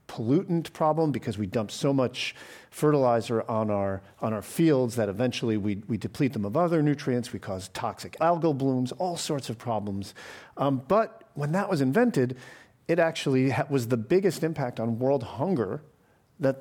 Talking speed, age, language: 175 wpm, 40-59, English